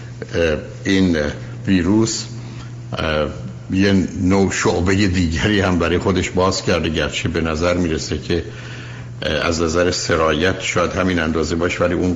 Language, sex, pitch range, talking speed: Persian, male, 85-110 Hz, 130 wpm